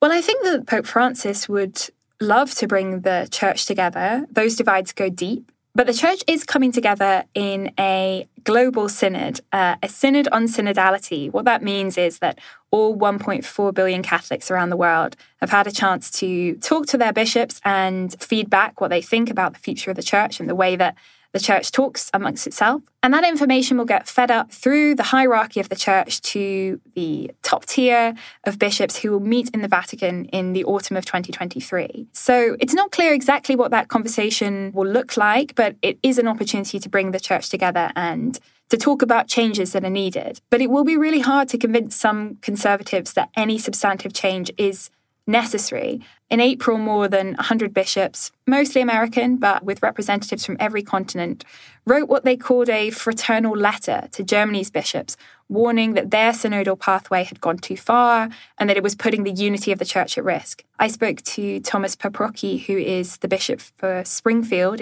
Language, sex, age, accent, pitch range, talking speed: English, female, 10-29, British, 195-245 Hz, 190 wpm